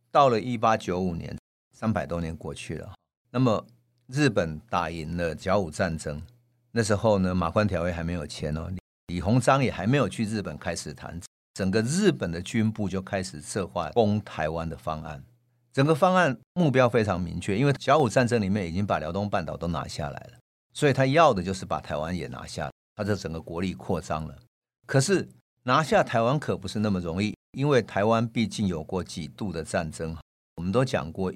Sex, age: male, 50-69